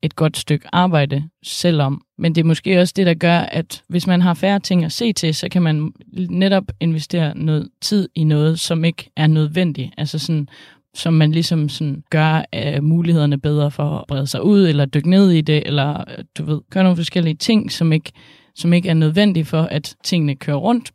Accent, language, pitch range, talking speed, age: native, Danish, 145-165 Hz, 205 wpm, 20-39